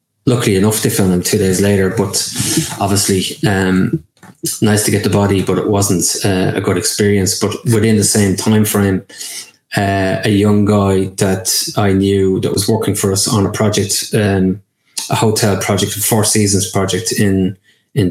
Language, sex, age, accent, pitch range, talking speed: English, male, 20-39, Irish, 95-105 Hz, 180 wpm